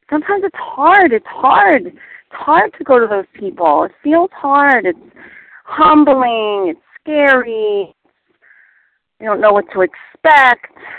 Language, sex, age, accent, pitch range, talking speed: English, female, 40-59, American, 205-305 Hz, 135 wpm